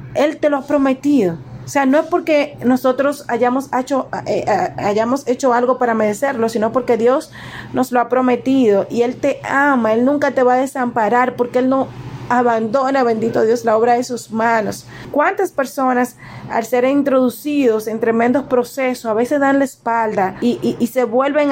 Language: Spanish